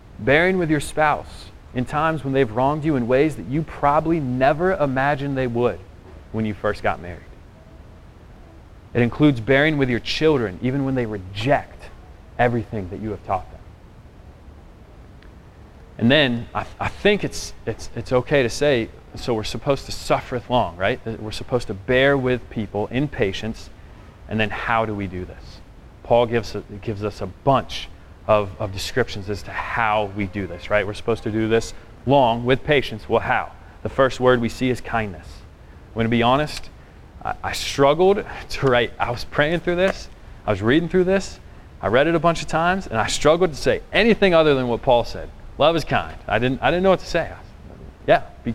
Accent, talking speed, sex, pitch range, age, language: American, 195 wpm, male, 100-135 Hz, 30-49, English